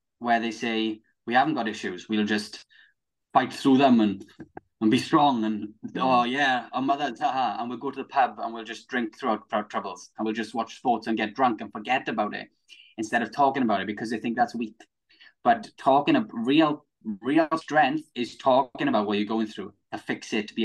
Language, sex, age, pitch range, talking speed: English, male, 10-29, 105-125 Hz, 220 wpm